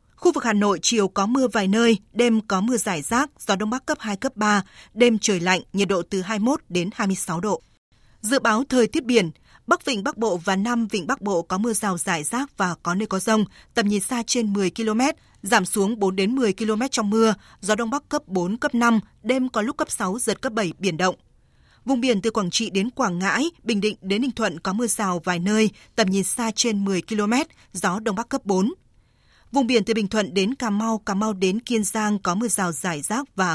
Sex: female